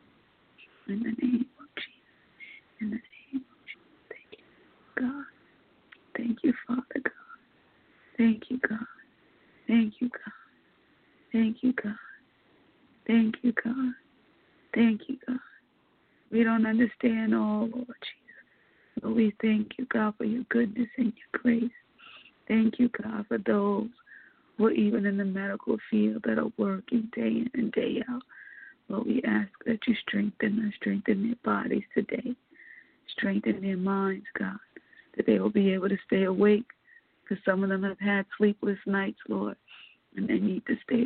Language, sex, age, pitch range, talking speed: English, female, 30-49, 210-245 Hz, 155 wpm